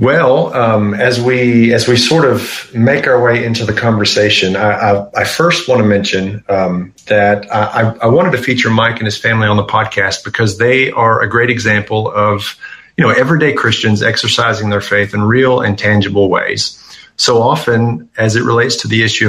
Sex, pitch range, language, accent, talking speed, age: male, 100-120 Hz, English, American, 195 wpm, 30-49